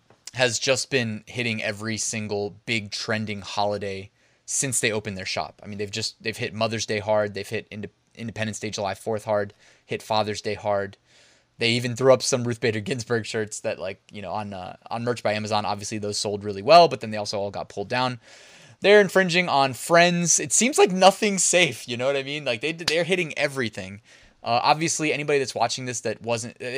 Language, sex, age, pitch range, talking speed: English, male, 20-39, 105-135 Hz, 210 wpm